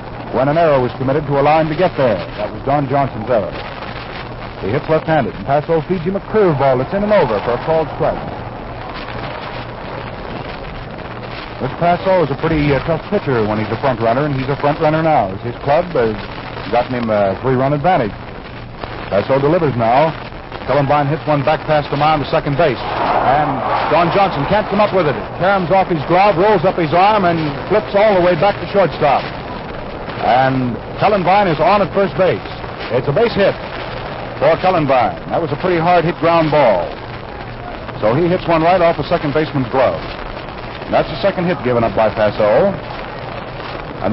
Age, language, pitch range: 60-79, English, 135-175 Hz